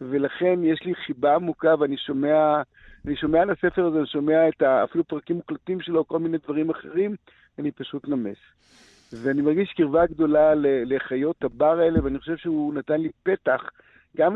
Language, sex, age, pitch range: Hebrew, male, 50-69, 145-180 Hz